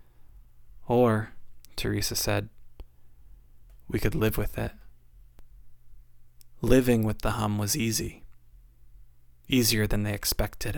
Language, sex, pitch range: English, male, 80-110 Hz